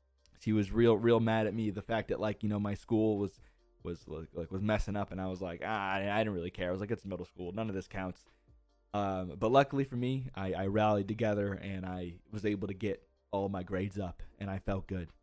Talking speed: 250 wpm